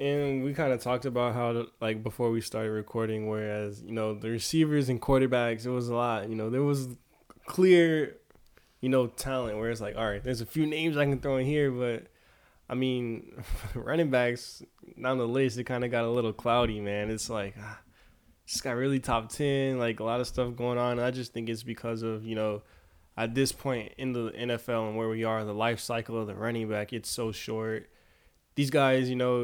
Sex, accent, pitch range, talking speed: male, American, 115-135 Hz, 220 wpm